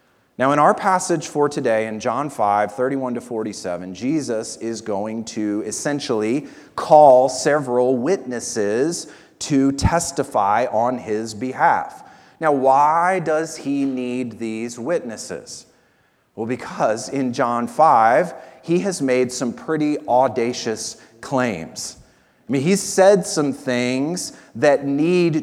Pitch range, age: 125-155 Hz, 30-49